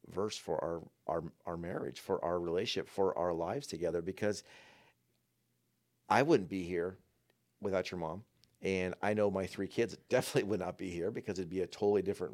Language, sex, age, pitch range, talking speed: English, male, 40-59, 95-110 Hz, 185 wpm